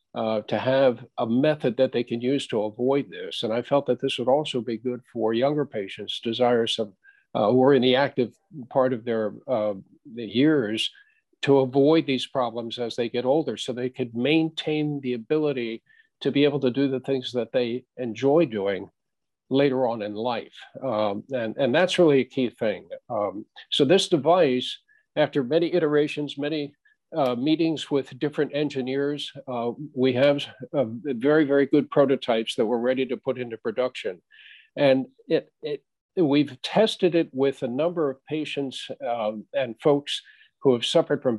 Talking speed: 175 wpm